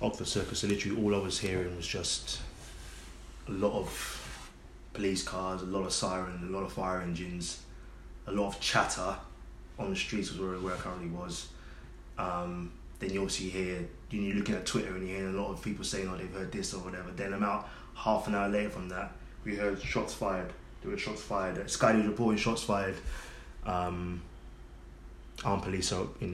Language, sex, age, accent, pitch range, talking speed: English, male, 20-39, British, 90-105 Hz, 195 wpm